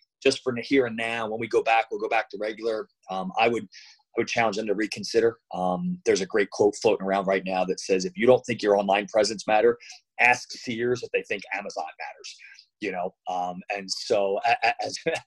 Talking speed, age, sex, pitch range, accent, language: 215 wpm, 30-49, male, 110-130 Hz, American, English